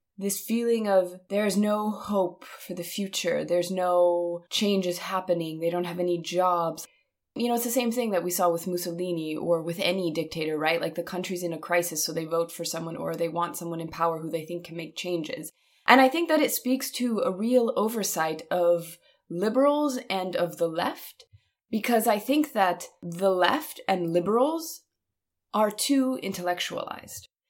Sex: female